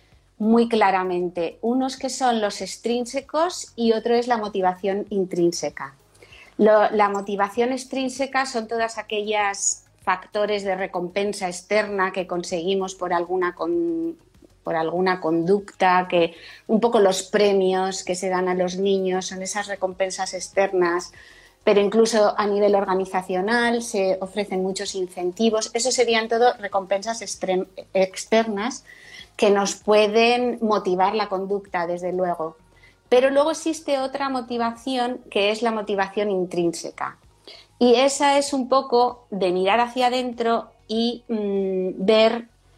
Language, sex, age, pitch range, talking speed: Spanish, female, 30-49, 185-230 Hz, 125 wpm